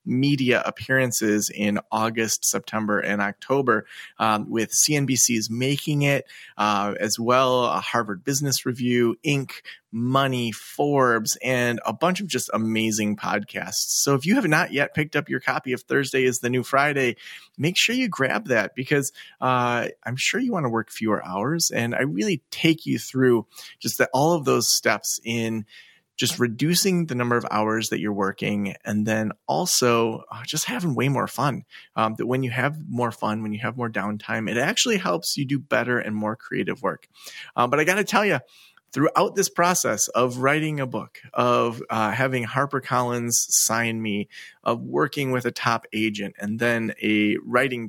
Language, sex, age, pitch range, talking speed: English, male, 30-49, 110-140 Hz, 175 wpm